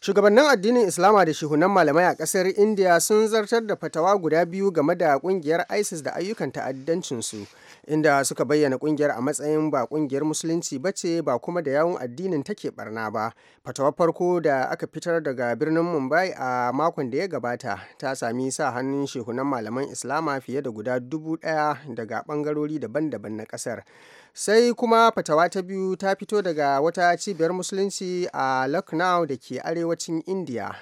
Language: English